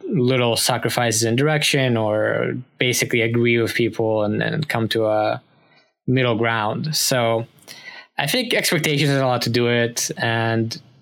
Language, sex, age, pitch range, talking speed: English, male, 10-29, 120-140 Hz, 145 wpm